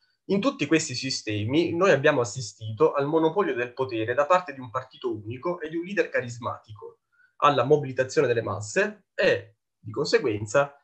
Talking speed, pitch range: 160 wpm, 120-180 Hz